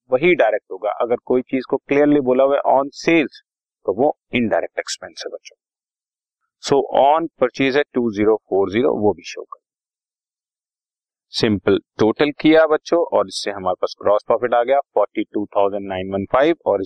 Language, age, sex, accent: Hindi, 30-49, male, native